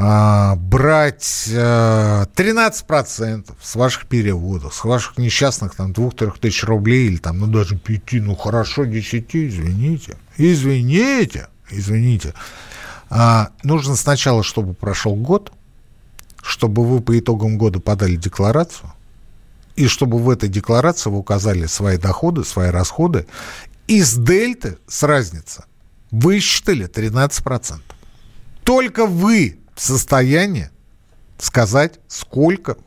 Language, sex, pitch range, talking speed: Russian, male, 105-150 Hz, 110 wpm